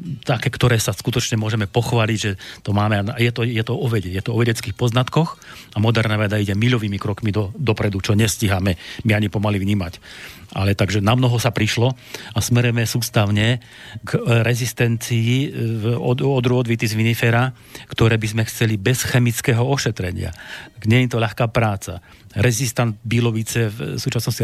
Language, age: Slovak, 40-59